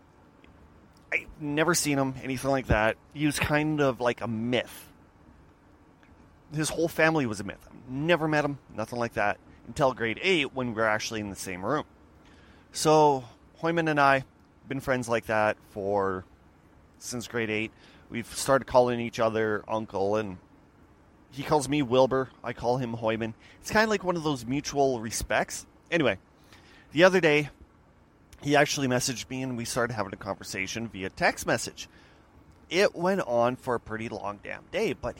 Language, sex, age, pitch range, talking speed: English, male, 30-49, 110-140 Hz, 170 wpm